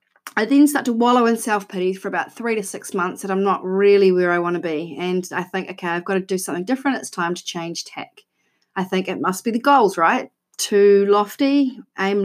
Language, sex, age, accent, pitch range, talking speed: English, female, 30-49, Australian, 185-240 Hz, 235 wpm